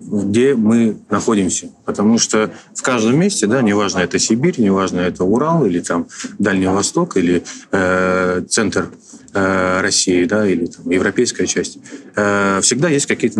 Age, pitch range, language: 30-49, 100-125 Hz, Russian